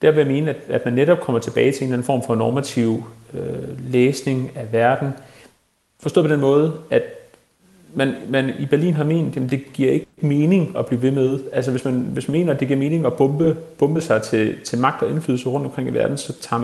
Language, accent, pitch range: Danish, native, 120-150 Hz